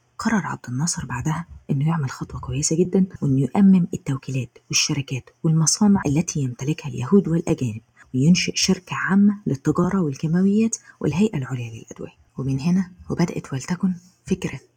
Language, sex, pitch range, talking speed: Arabic, female, 140-180 Hz, 125 wpm